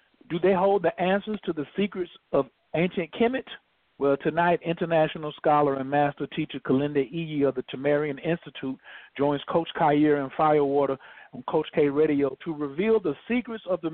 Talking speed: 170 wpm